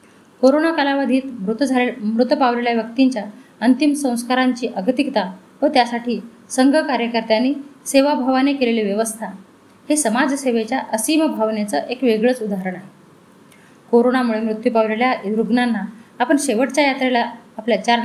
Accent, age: native, 20-39